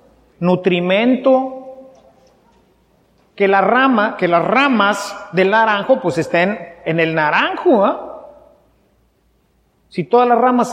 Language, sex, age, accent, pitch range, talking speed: English, male, 40-59, Mexican, 180-255 Hz, 105 wpm